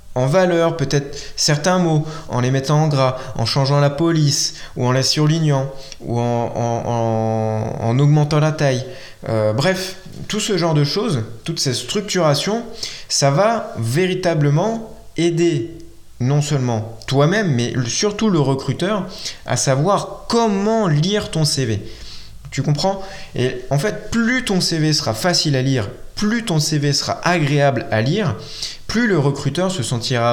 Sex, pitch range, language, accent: male, 125-170 Hz, French, French